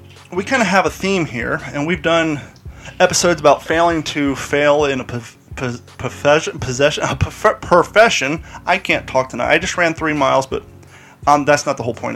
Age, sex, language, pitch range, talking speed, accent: 30-49, male, English, 130-170 Hz, 195 wpm, American